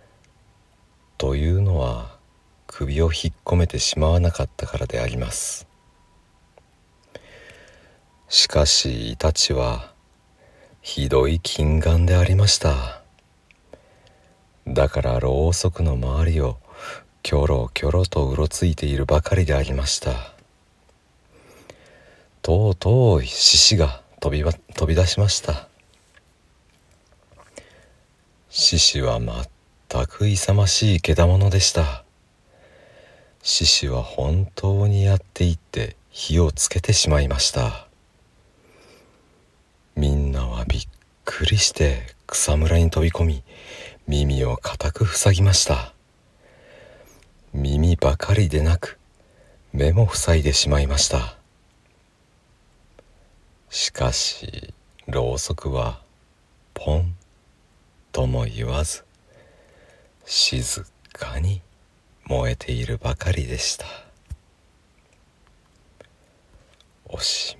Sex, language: male, Japanese